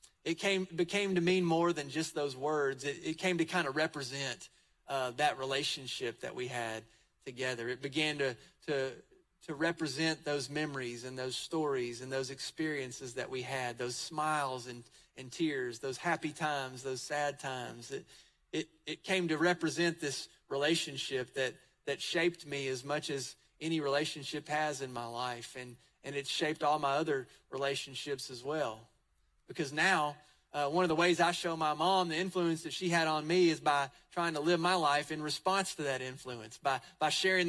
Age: 30-49